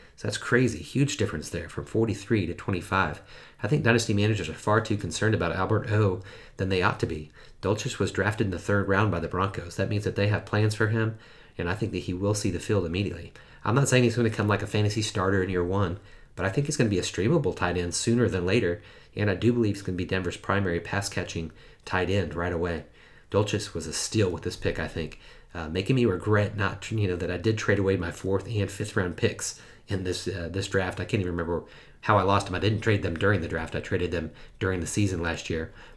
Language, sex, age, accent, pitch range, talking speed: English, male, 30-49, American, 90-110 Hz, 255 wpm